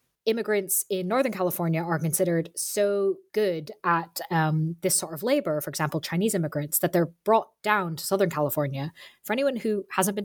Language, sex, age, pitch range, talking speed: English, female, 20-39, 170-210 Hz, 175 wpm